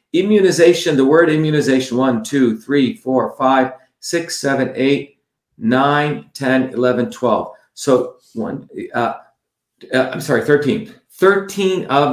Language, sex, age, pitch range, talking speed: English, male, 50-69, 115-145 Hz, 140 wpm